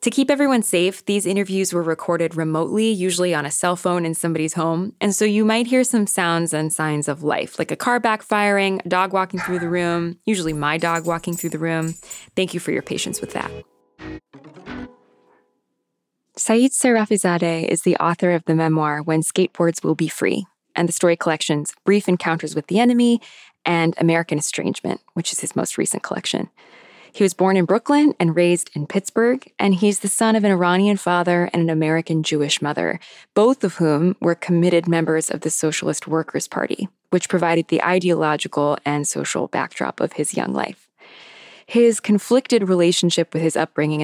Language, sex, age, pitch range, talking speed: English, female, 20-39, 160-195 Hz, 180 wpm